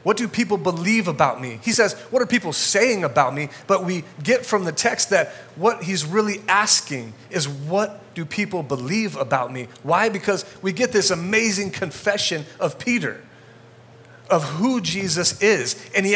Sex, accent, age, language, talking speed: male, American, 30-49, English, 175 wpm